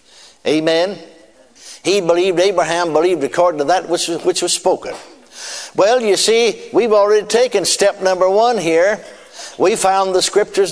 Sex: male